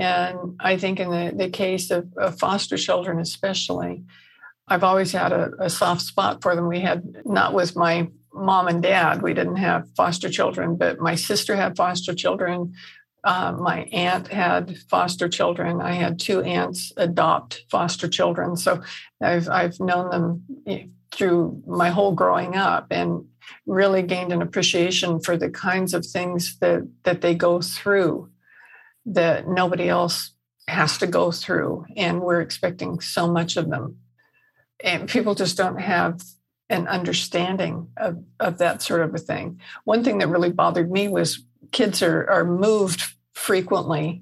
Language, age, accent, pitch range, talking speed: English, 60-79, American, 170-185 Hz, 160 wpm